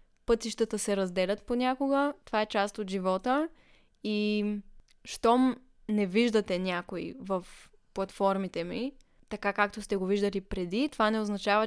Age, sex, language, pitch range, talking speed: 20-39, female, Bulgarian, 195-245 Hz, 135 wpm